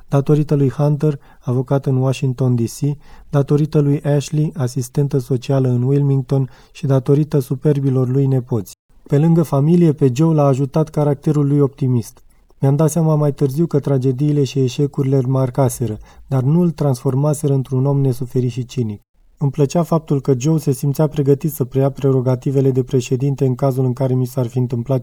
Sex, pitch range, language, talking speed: male, 130-145 Hz, Romanian, 170 wpm